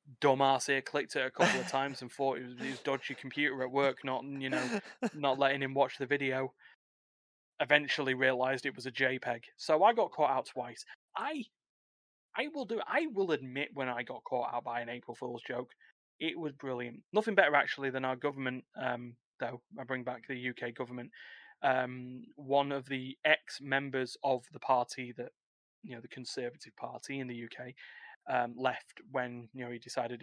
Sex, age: male, 20-39